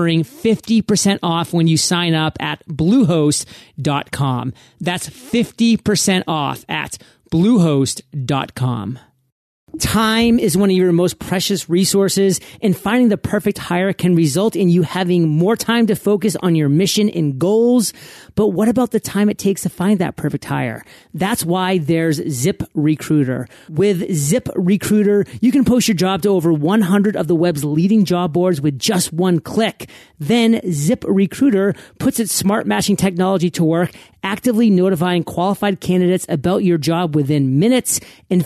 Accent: American